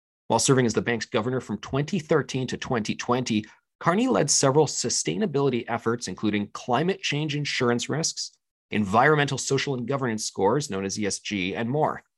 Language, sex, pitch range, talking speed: English, male, 110-145 Hz, 150 wpm